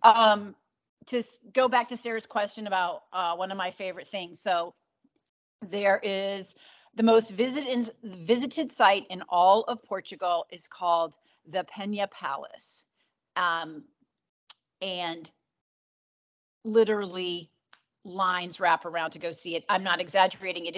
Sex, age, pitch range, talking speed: female, 40-59, 160-200 Hz, 130 wpm